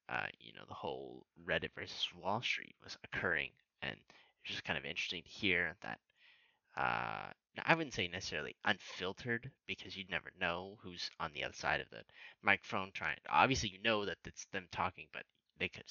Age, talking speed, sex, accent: 20-39, 190 wpm, male, American